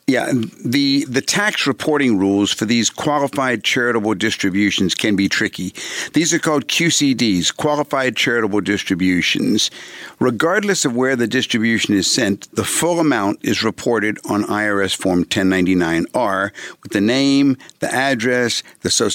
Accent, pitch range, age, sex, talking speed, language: American, 105-135 Hz, 60-79, male, 140 wpm, English